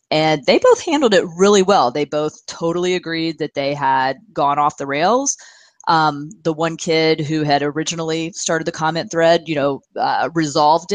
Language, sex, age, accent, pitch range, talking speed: English, female, 30-49, American, 150-185 Hz, 180 wpm